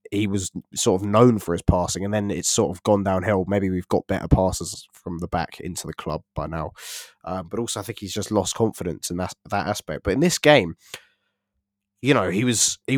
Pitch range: 95-110 Hz